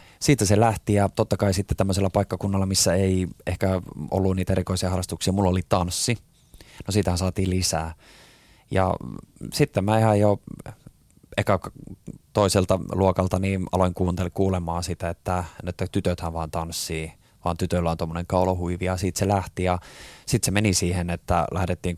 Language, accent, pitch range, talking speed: Finnish, native, 85-95 Hz, 155 wpm